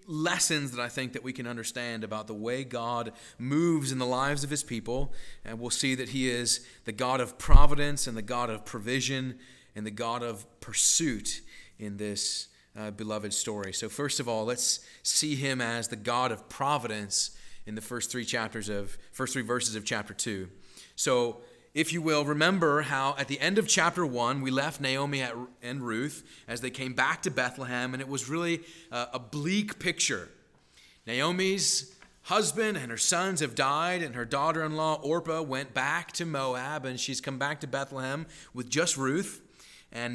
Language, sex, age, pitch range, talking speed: English, male, 30-49, 115-155 Hz, 185 wpm